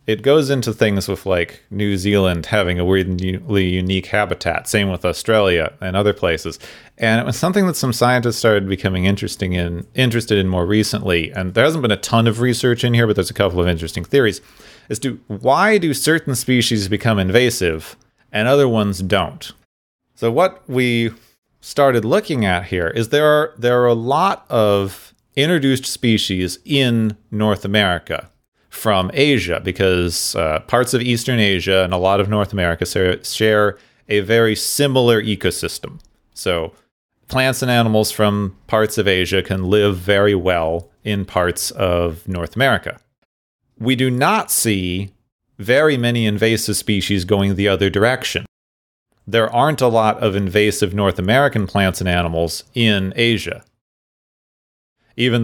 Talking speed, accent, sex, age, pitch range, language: 155 wpm, American, male, 30-49, 95-120 Hz, English